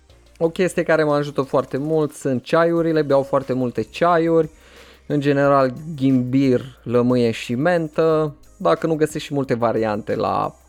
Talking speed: 145 wpm